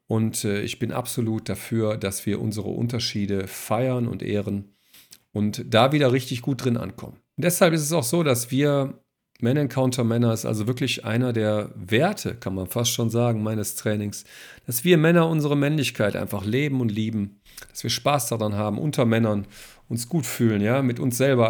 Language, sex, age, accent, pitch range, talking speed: German, male, 40-59, German, 105-135 Hz, 185 wpm